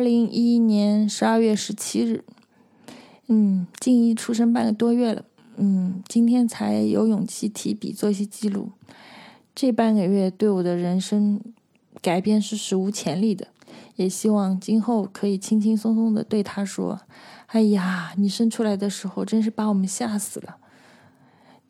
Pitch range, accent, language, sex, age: 205-235 Hz, native, Chinese, female, 20-39